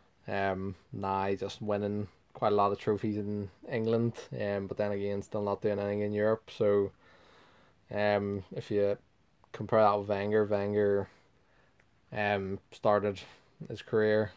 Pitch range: 100-110 Hz